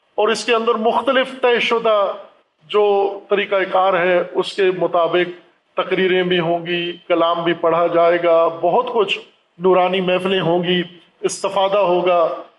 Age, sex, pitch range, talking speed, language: 50-69, male, 175-220 Hz, 150 wpm, Urdu